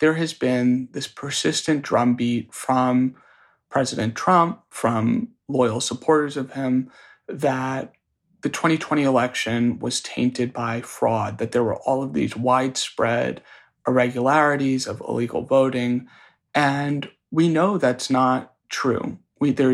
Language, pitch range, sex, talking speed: English, 125-150 Hz, male, 120 wpm